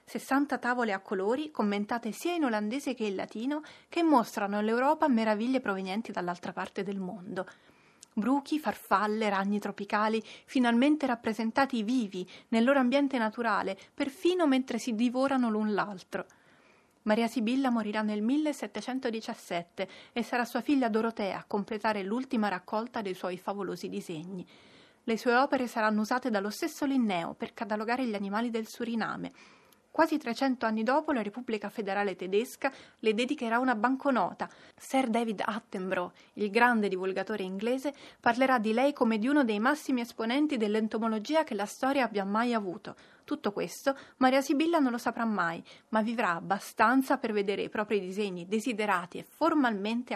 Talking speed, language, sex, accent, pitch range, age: 145 wpm, Italian, female, native, 210-260 Hz, 30-49